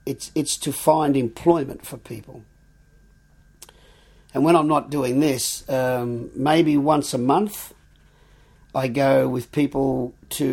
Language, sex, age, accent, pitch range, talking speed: French, male, 50-69, Australian, 115-140 Hz, 130 wpm